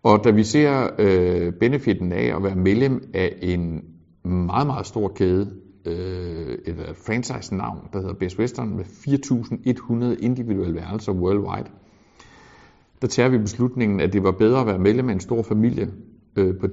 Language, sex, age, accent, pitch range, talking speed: Danish, male, 60-79, native, 90-115 Hz, 155 wpm